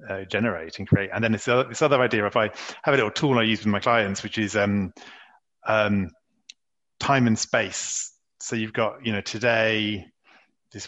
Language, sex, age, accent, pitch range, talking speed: English, male, 30-49, British, 105-130 Hz, 200 wpm